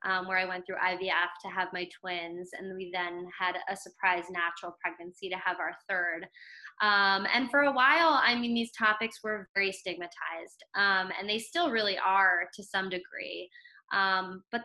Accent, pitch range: American, 185-225 Hz